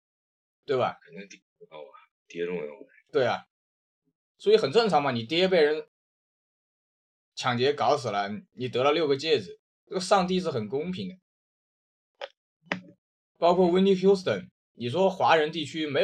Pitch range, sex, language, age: 115-190 Hz, male, Chinese, 20-39